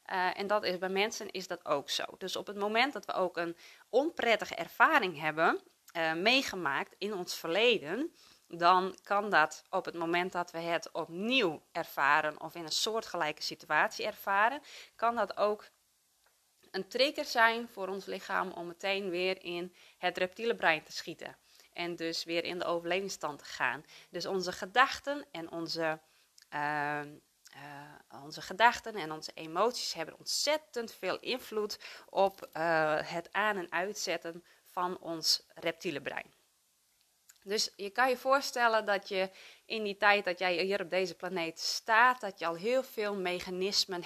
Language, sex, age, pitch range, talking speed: Dutch, female, 20-39, 170-220 Hz, 160 wpm